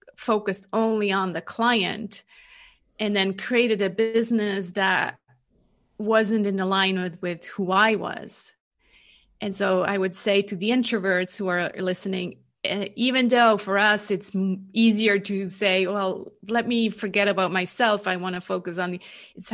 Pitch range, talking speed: 180-220 Hz, 155 wpm